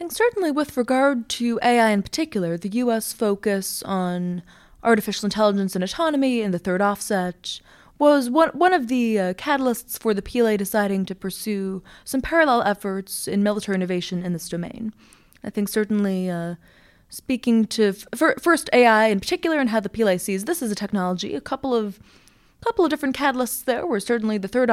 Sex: female